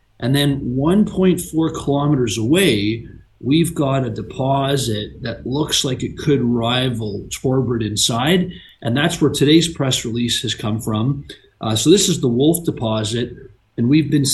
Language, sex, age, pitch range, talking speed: English, male, 40-59, 115-145 Hz, 150 wpm